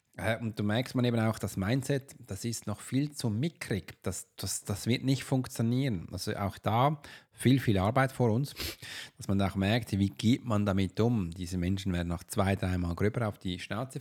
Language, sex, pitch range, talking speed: German, male, 100-135 Hz, 205 wpm